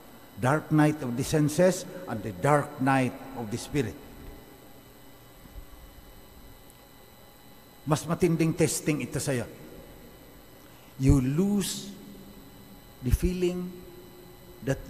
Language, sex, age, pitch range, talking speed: English, male, 50-69, 130-185 Hz, 90 wpm